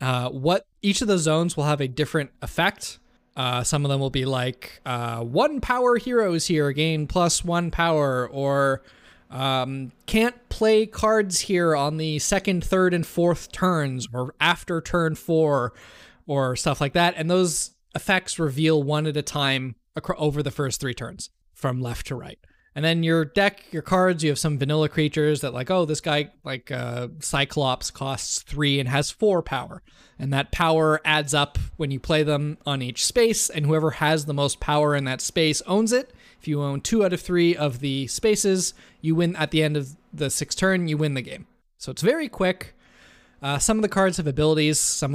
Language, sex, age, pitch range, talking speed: English, male, 20-39, 140-170 Hz, 200 wpm